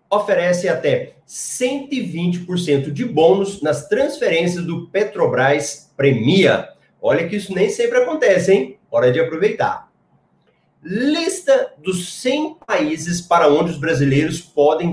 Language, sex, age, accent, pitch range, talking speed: Portuguese, male, 30-49, Brazilian, 160-260 Hz, 115 wpm